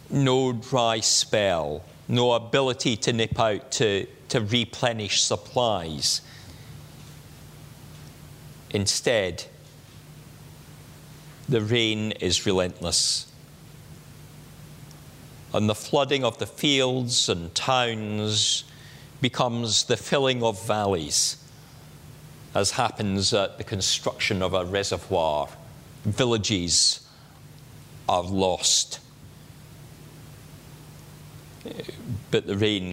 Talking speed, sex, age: 80 wpm, male, 40-59